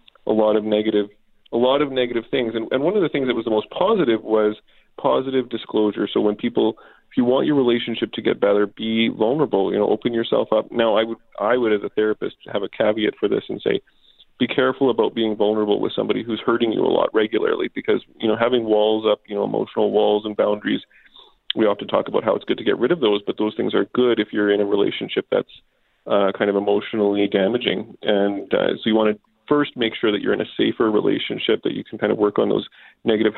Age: 30-49